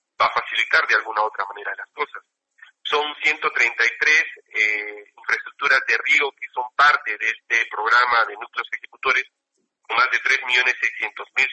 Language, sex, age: Spanish, male, 40-59